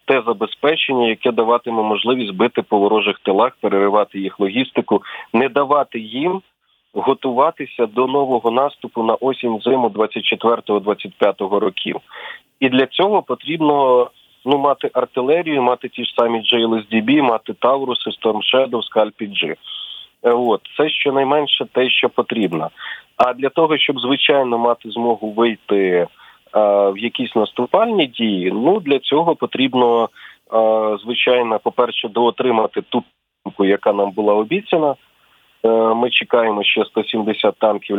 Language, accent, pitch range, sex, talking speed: Ukrainian, native, 110-135 Hz, male, 125 wpm